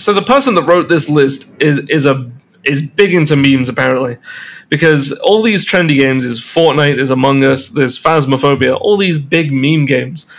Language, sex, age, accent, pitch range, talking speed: English, male, 20-39, British, 135-165 Hz, 185 wpm